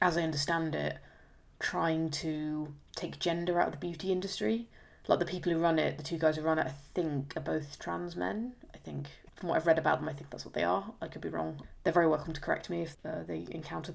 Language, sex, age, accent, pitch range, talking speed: English, female, 20-39, British, 135-160 Hz, 255 wpm